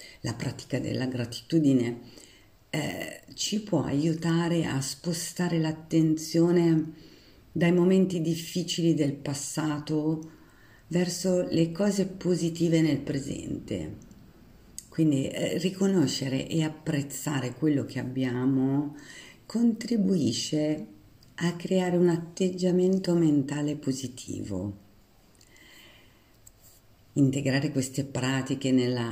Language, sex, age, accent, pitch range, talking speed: Italian, female, 50-69, native, 125-160 Hz, 85 wpm